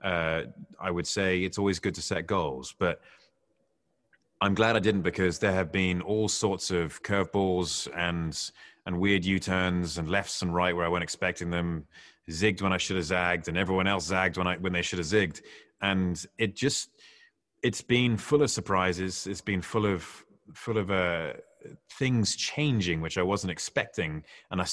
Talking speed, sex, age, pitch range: 185 wpm, male, 30-49, 85-105 Hz